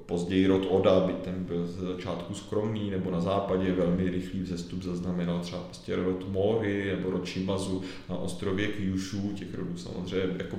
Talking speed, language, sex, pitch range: 170 wpm, Czech, male, 95-110 Hz